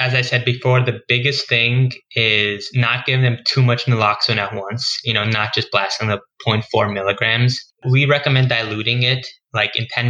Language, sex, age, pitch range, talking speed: English, male, 10-29, 105-125 Hz, 185 wpm